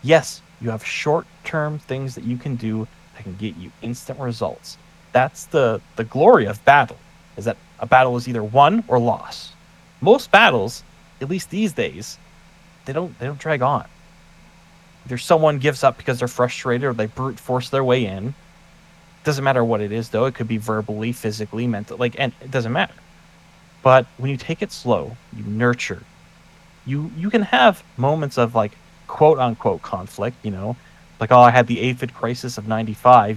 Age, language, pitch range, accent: 30-49, English, 120-165 Hz, American